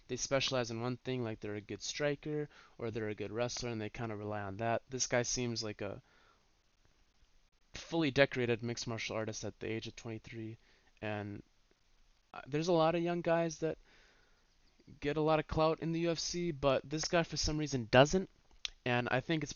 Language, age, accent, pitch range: English, 20-39, American, 115-145 Hz